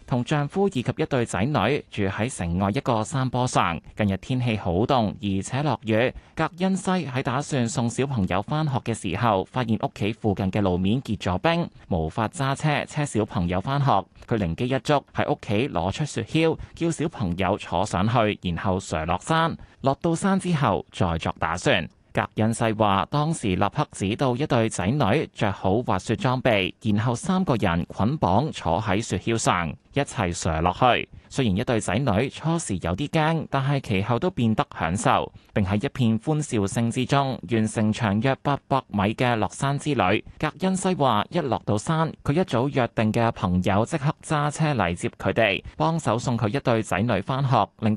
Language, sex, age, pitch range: Chinese, male, 20-39, 100-140 Hz